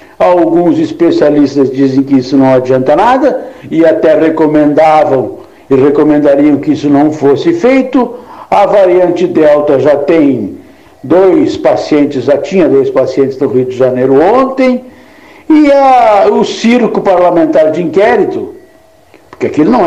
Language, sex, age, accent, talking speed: Portuguese, male, 60-79, Brazilian, 130 wpm